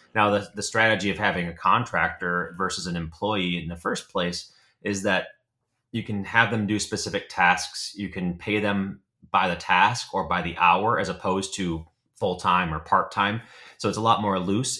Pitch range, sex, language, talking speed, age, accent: 95-110 Hz, male, English, 190 wpm, 30-49, American